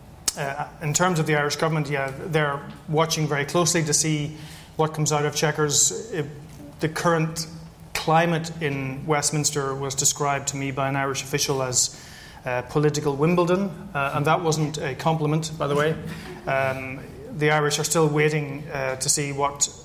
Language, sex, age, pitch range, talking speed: English, male, 30-49, 140-155 Hz, 165 wpm